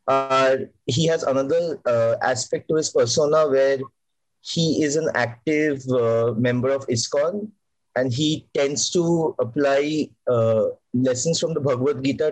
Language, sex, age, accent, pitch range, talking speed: Bengali, male, 30-49, native, 125-160 Hz, 140 wpm